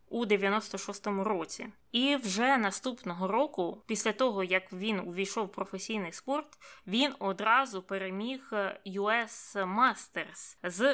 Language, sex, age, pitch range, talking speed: Ukrainian, female, 20-39, 190-225 Hz, 115 wpm